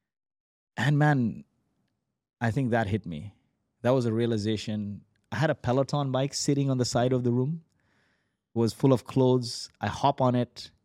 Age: 20-39